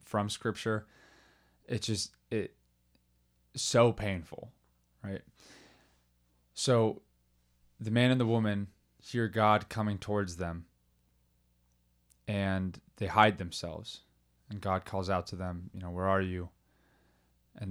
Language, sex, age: English, male, 20-39